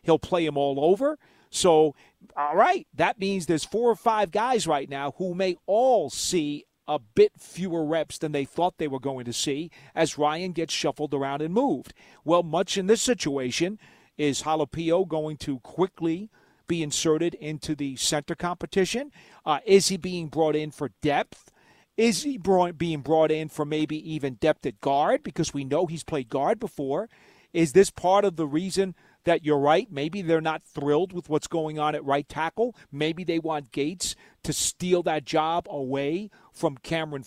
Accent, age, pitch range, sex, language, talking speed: American, 40-59, 150-190 Hz, male, English, 180 wpm